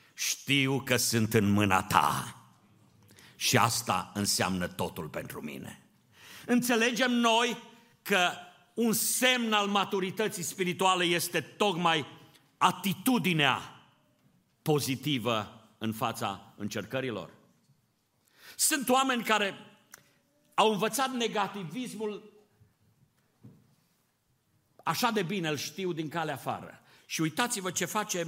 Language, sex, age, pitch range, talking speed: Romanian, male, 50-69, 130-200 Hz, 95 wpm